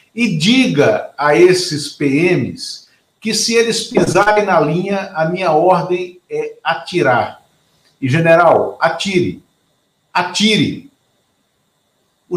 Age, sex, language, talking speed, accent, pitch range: 50-69, male, Portuguese, 100 wpm, Brazilian, 145-195 Hz